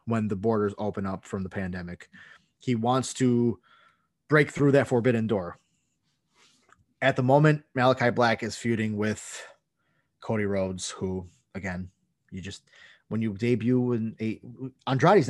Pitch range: 105-130 Hz